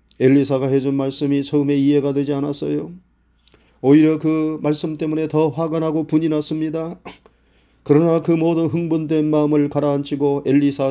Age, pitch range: 40-59, 110-155 Hz